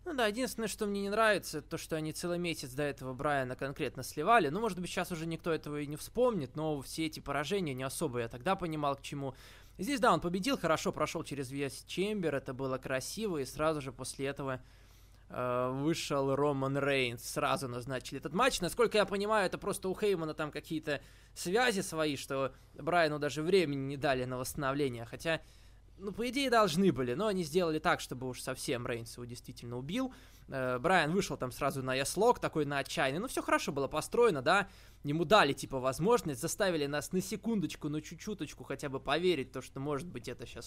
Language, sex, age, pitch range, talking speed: Russian, male, 20-39, 130-185 Hz, 200 wpm